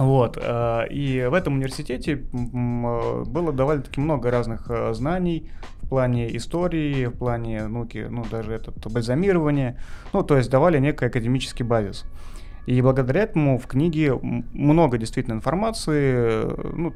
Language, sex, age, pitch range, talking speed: Russian, male, 30-49, 110-140 Hz, 125 wpm